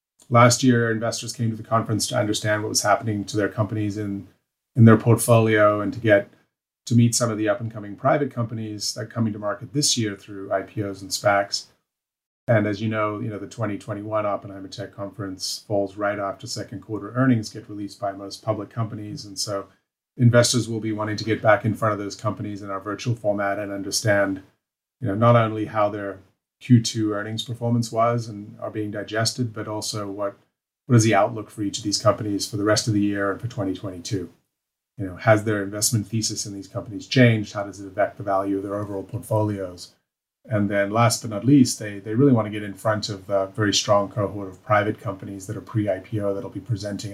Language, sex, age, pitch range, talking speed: English, male, 30-49, 100-115 Hz, 215 wpm